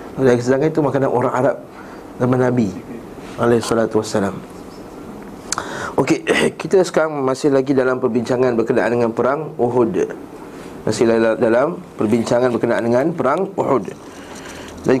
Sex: male